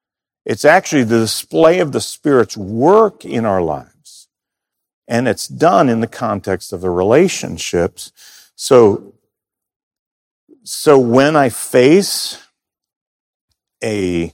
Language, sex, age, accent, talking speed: English, male, 50-69, American, 110 wpm